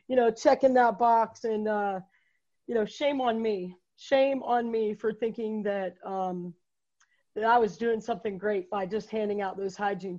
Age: 40-59